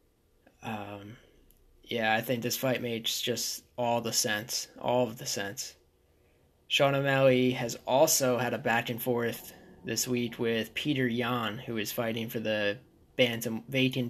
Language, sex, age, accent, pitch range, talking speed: English, male, 10-29, American, 110-125 Hz, 155 wpm